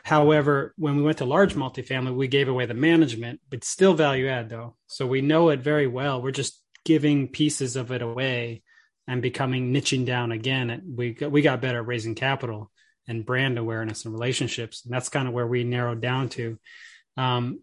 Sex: male